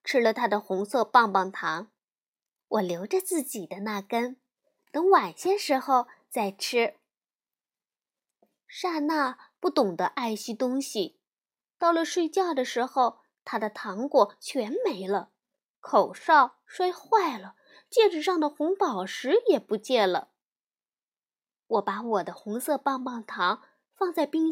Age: 20-39